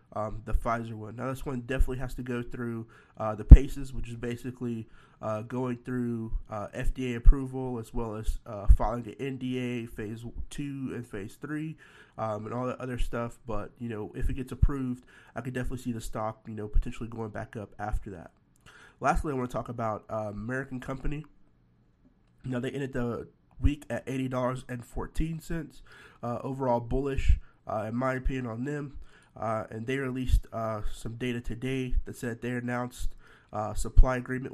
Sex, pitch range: male, 110-130 Hz